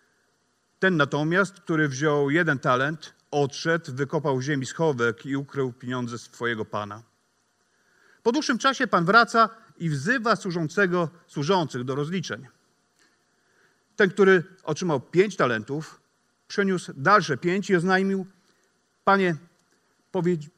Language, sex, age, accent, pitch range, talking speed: Polish, male, 40-59, native, 140-195 Hz, 110 wpm